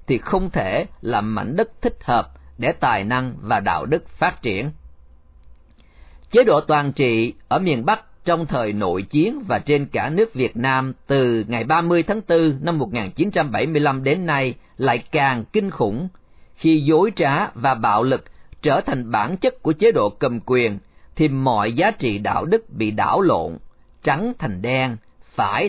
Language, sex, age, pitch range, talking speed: Vietnamese, male, 40-59, 115-170 Hz, 175 wpm